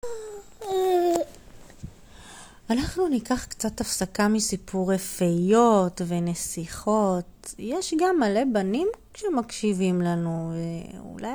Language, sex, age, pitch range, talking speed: Hebrew, female, 30-49, 195-260 Hz, 75 wpm